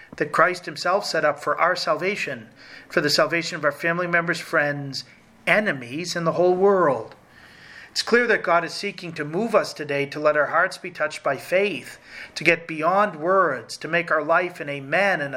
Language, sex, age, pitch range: English, male, 40-59, 155-190 Hz